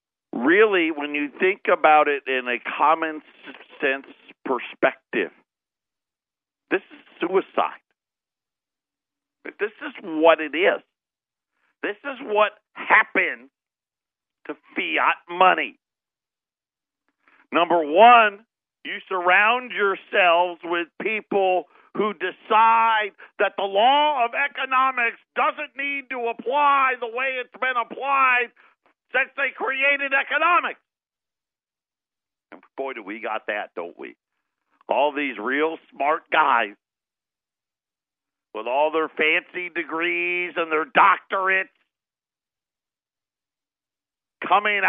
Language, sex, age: English, male, 50-69